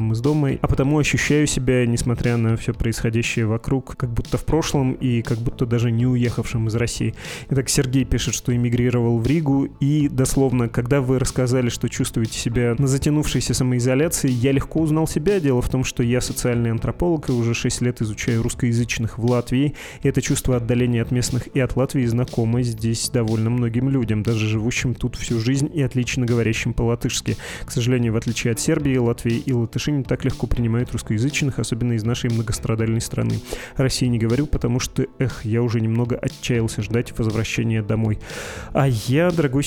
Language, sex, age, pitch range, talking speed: Russian, male, 20-39, 115-135 Hz, 175 wpm